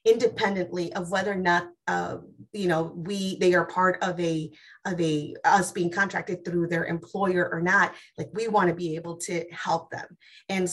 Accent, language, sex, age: American, English, female, 30-49